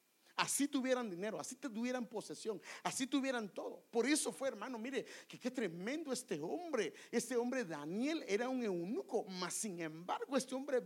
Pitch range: 175-245 Hz